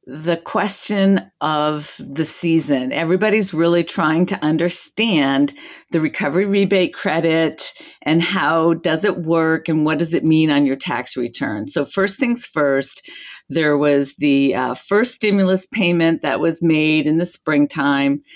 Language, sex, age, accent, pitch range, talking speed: English, female, 50-69, American, 150-195 Hz, 145 wpm